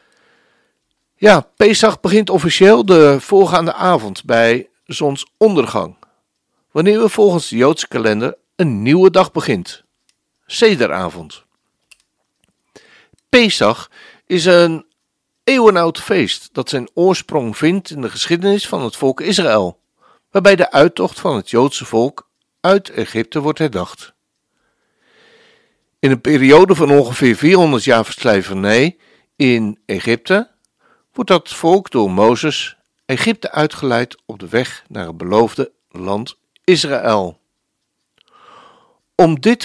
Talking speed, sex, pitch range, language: 110 wpm, male, 135-195 Hz, Dutch